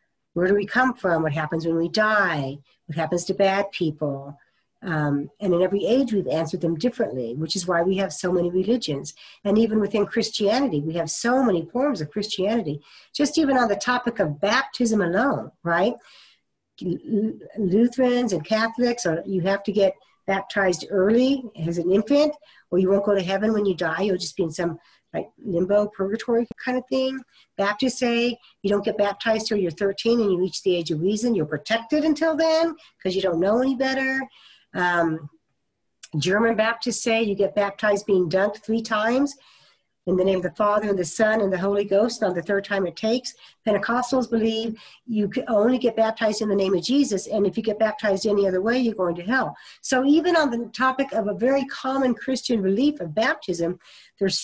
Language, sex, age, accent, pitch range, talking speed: English, female, 50-69, American, 185-240 Hz, 195 wpm